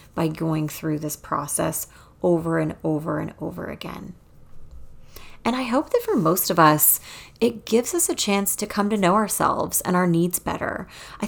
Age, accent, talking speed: 30-49, American, 180 wpm